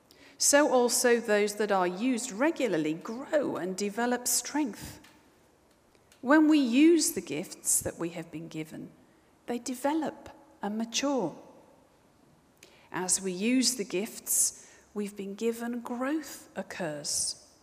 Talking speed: 120 wpm